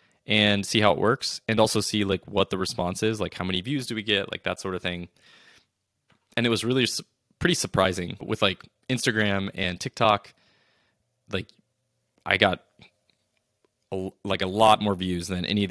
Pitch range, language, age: 95-110 Hz, English, 20-39